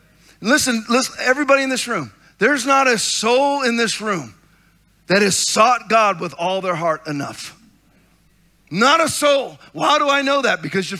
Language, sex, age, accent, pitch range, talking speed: English, male, 40-59, American, 155-230 Hz, 175 wpm